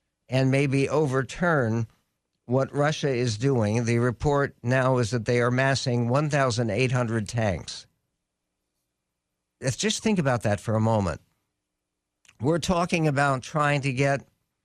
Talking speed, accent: 125 wpm, American